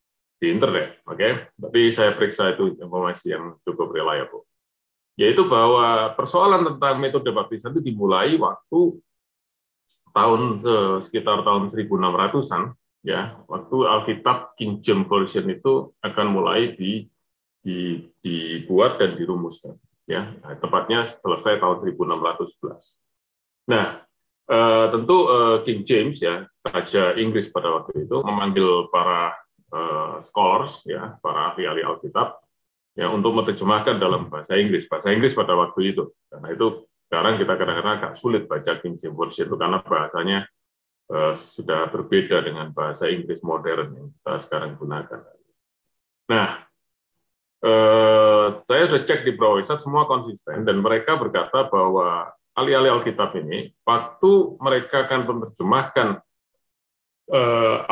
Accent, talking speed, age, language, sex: native, 125 wpm, 30-49, Indonesian, male